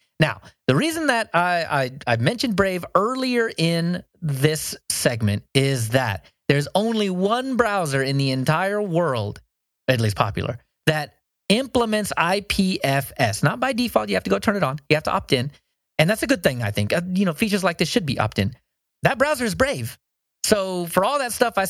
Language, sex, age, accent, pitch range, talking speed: English, male, 30-49, American, 135-210 Hz, 195 wpm